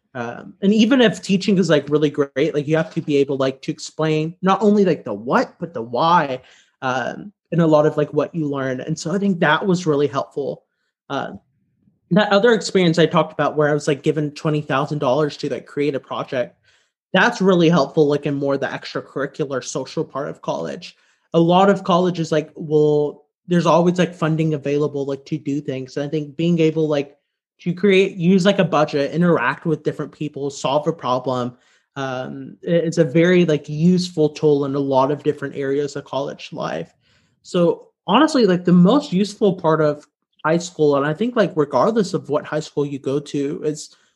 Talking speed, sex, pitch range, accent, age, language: 200 wpm, male, 145-180 Hz, American, 20-39, English